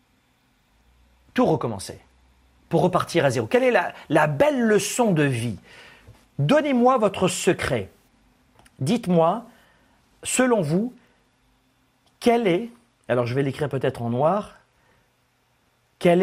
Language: French